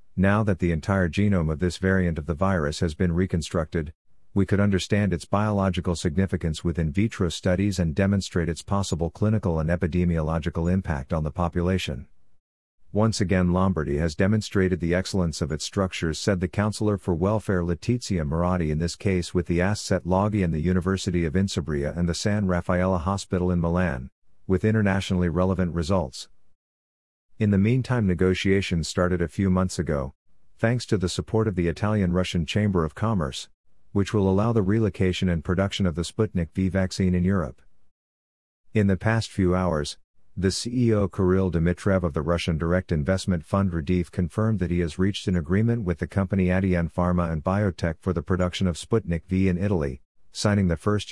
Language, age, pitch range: English, 50-69, 85-100 Hz